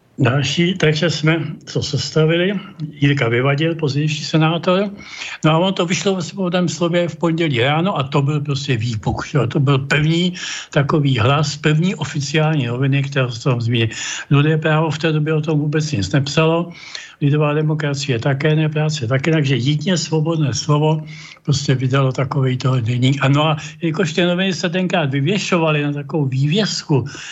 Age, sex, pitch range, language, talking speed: 60-79, male, 140-165 Hz, Czech, 155 wpm